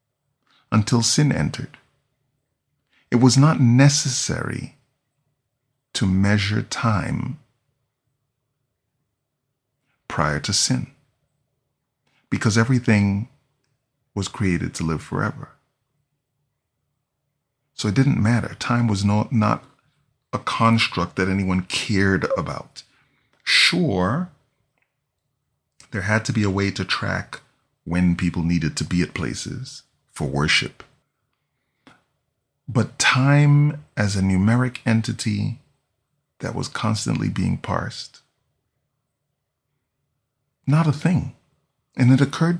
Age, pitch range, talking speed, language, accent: 40-59, 110-140 Hz, 95 wpm, English, American